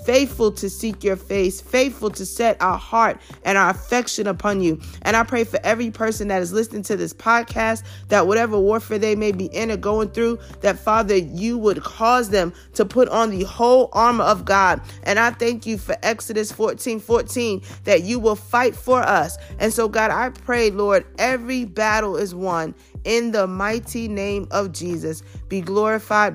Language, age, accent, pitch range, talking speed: English, 30-49, American, 185-225 Hz, 190 wpm